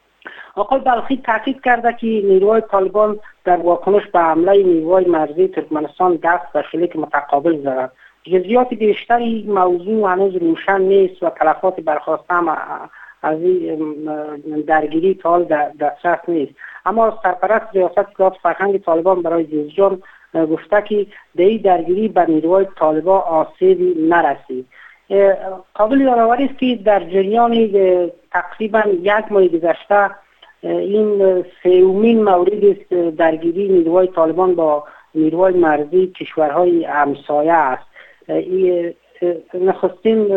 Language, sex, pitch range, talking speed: Persian, female, 160-195 Hz, 110 wpm